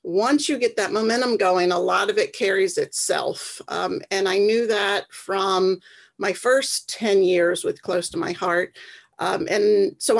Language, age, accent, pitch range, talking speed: English, 50-69, American, 185-235 Hz, 175 wpm